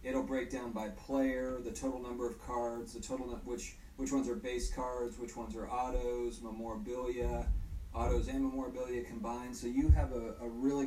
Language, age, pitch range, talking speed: English, 30-49, 100-125 Hz, 190 wpm